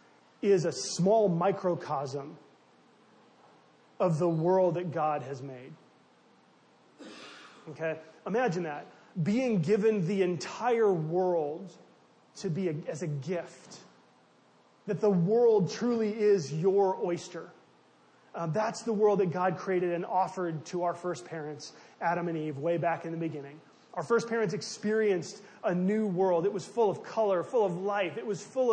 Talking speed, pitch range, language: 145 wpm, 170-210 Hz, English